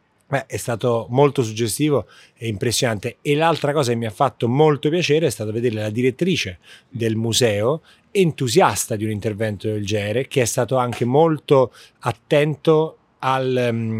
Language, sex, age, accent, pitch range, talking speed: Italian, male, 30-49, native, 115-135 Hz, 155 wpm